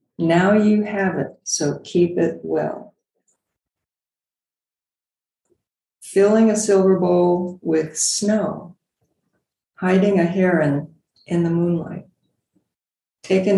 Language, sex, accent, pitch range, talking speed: English, female, American, 160-190 Hz, 95 wpm